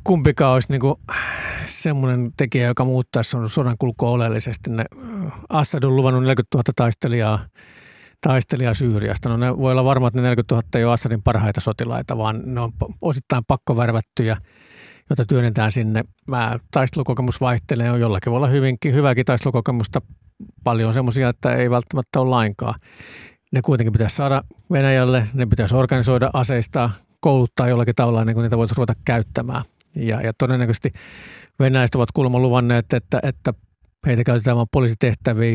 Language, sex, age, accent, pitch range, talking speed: Finnish, male, 60-79, native, 115-130 Hz, 145 wpm